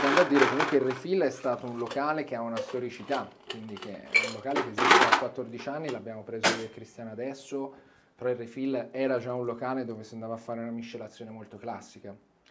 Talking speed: 215 wpm